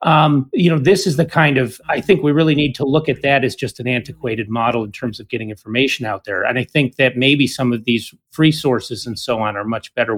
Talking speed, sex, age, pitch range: 270 wpm, male, 40-59, 120-150 Hz